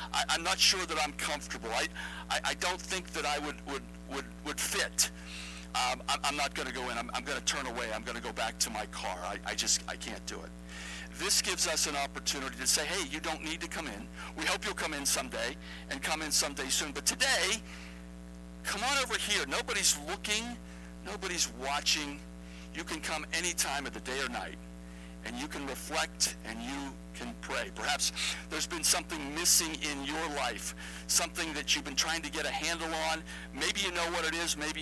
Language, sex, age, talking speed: English, male, 60-79, 210 wpm